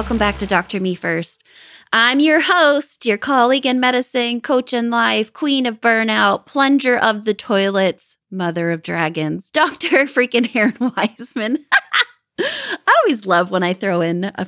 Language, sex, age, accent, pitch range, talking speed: English, female, 20-39, American, 185-255 Hz, 160 wpm